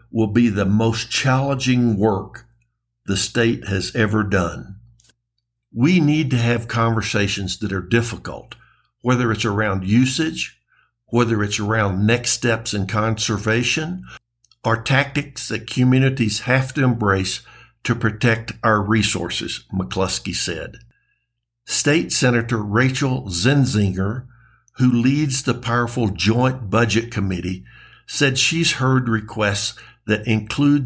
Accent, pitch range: American, 105-130 Hz